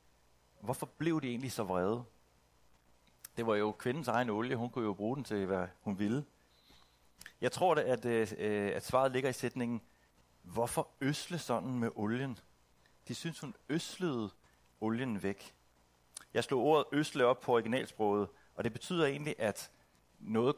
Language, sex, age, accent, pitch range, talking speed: Danish, male, 60-79, native, 80-130 Hz, 160 wpm